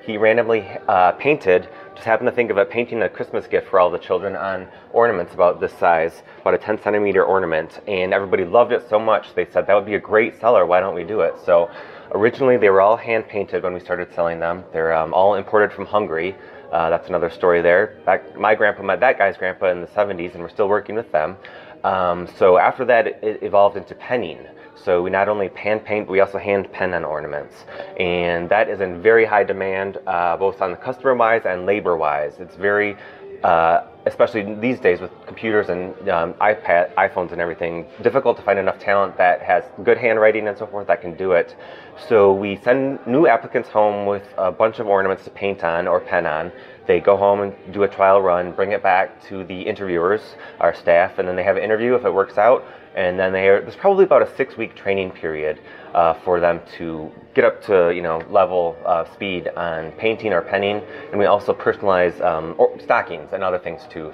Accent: American